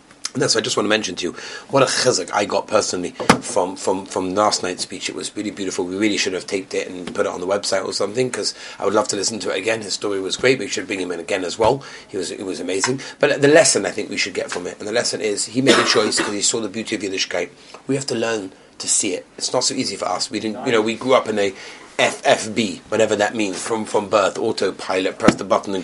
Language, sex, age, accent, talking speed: English, male, 40-59, British, 290 wpm